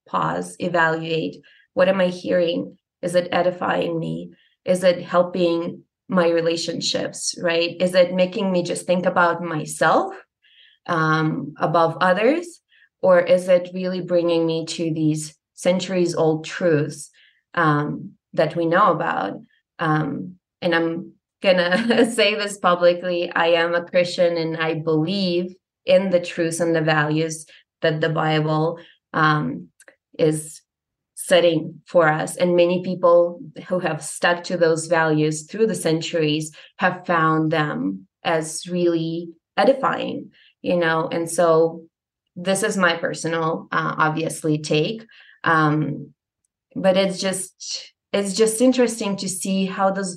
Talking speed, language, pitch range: 135 wpm, English, 160-180 Hz